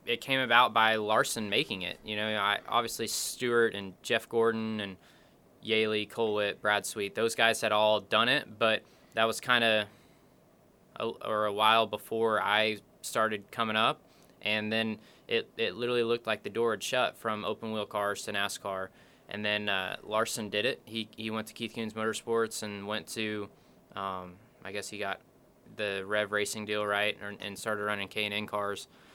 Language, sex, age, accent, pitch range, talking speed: English, male, 20-39, American, 105-115 Hz, 185 wpm